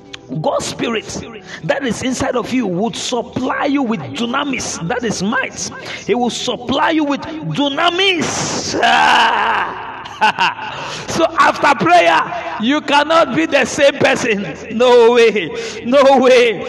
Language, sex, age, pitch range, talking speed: English, male, 50-69, 245-315 Hz, 120 wpm